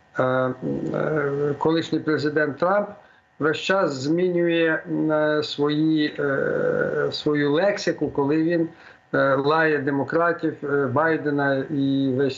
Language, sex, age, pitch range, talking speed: Ukrainian, male, 50-69, 130-160 Hz, 75 wpm